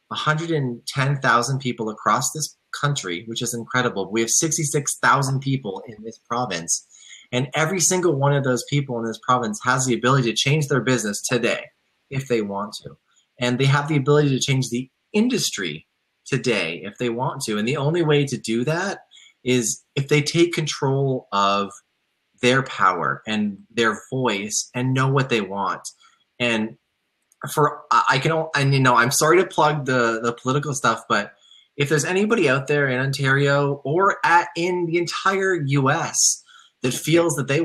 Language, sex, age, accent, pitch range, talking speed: English, male, 20-39, American, 115-150 Hz, 170 wpm